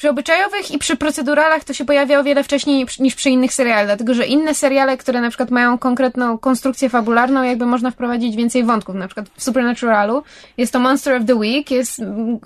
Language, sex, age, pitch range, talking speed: Polish, female, 20-39, 245-275 Hz, 200 wpm